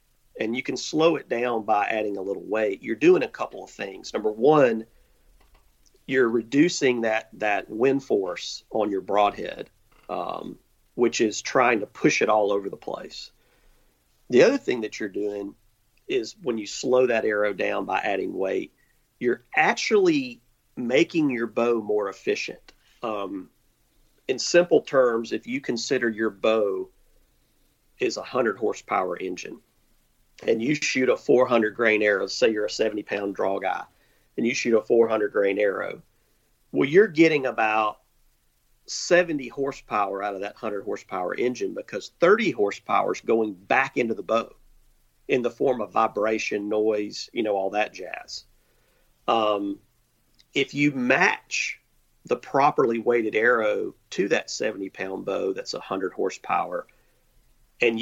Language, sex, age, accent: English, male, 40-59, American